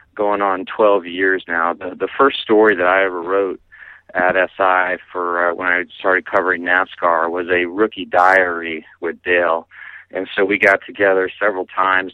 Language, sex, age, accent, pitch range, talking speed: English, male, 30-49, American, 85-95 Hz, 175 wpm